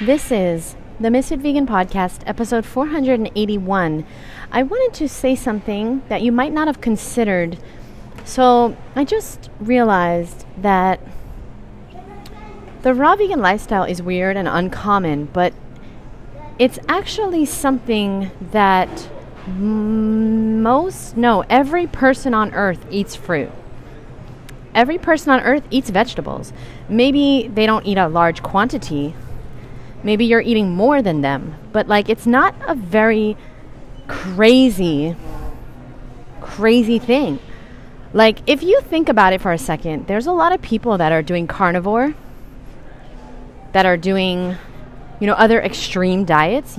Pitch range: 175-245 Hz